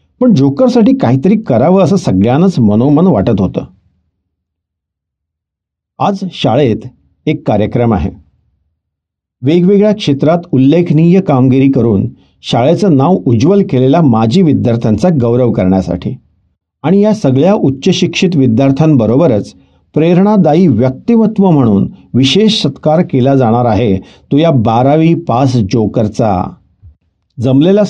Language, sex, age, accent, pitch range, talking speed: Marathi, male, 50-69, native, 110-155 Hz, 100 wpm